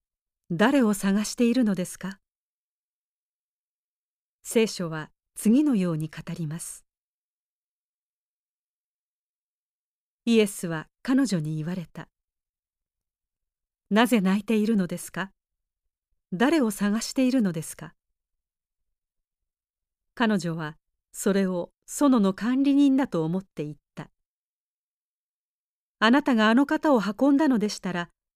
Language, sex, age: Japanese, female, 40-59